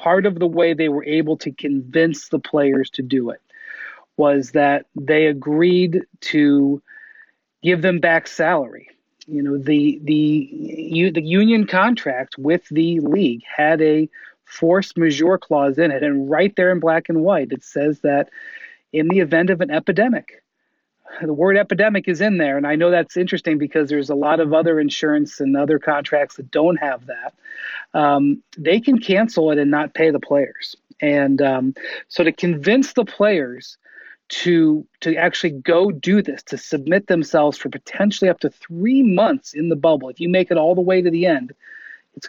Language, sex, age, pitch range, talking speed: English, male, 40-59, 150-195 Hz, 180 wpm